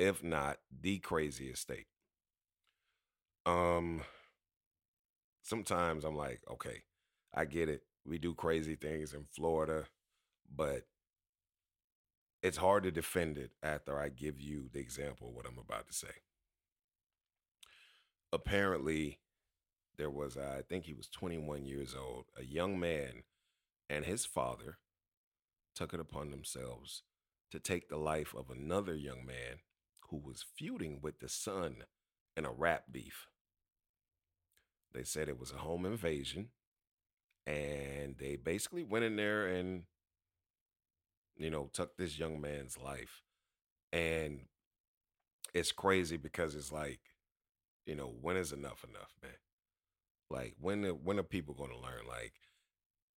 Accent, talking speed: American, 135 wpm